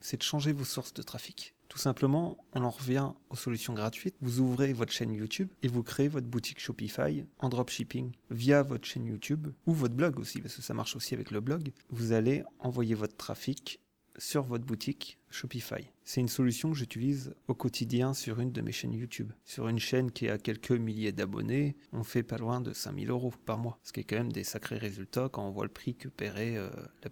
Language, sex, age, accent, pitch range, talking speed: French, male, 30-49, French, 115-135 Hz, 220 wpm